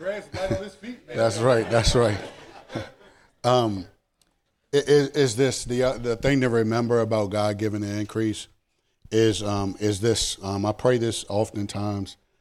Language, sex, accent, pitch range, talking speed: English, male, American, 110-130 Hz, 135 wpm